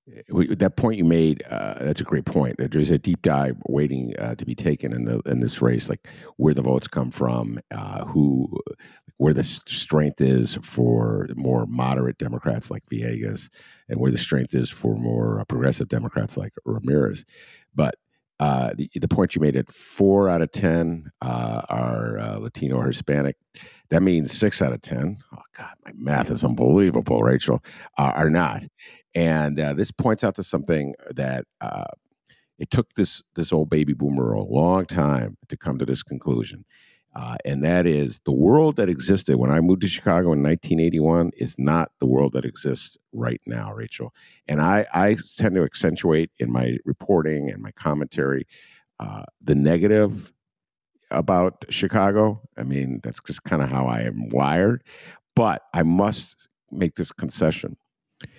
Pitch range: 65-85 Hz